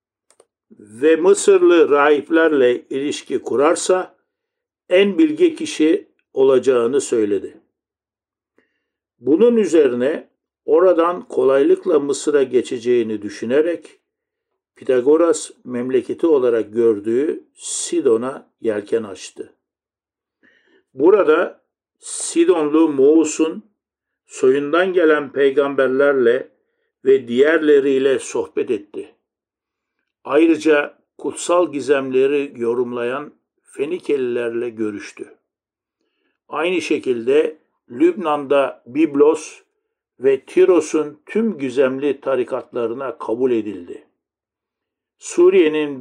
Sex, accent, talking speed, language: male, native, 70 wpm, Turkish